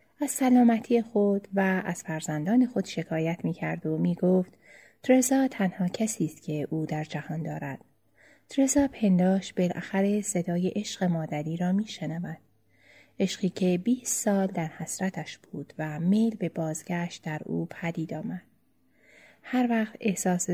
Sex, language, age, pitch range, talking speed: female, Persian, 30-49, 165-205 Hz, 135 wpm